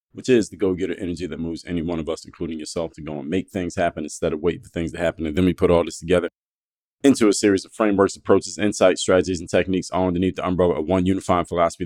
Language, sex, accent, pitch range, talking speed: English, male, American, 85-105 Hz, 260 wpm